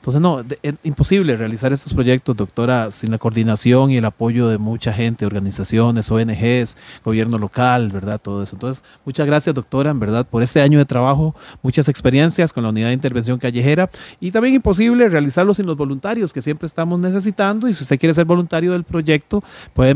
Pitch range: 120-160 Hz